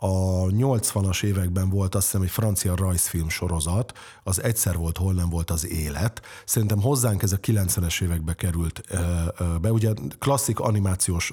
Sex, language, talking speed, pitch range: male, Hungarian, 155 wpm, 90-110 Hz